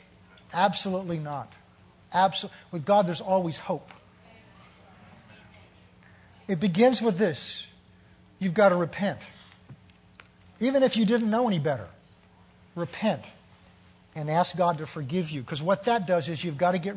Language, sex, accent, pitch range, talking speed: English, male, American, 140-190 Hz, 135 wpm